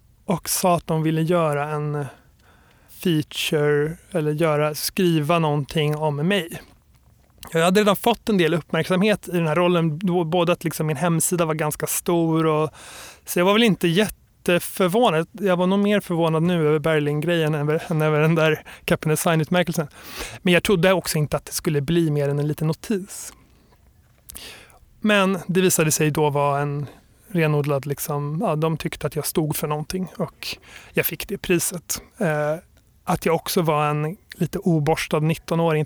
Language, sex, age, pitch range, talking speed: Swedish, male, 30-49, 150-175 Hz, 160 wpm